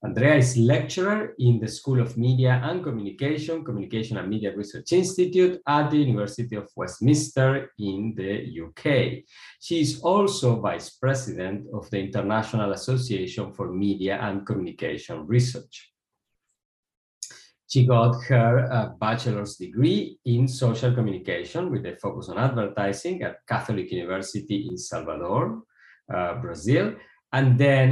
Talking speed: 130 wpm